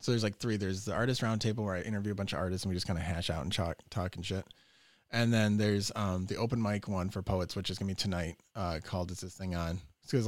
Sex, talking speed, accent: male, 290 wpm, American